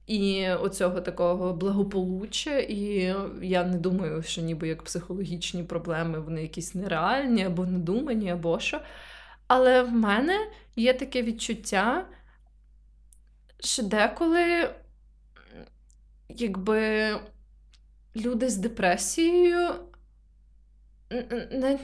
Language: Ukrainian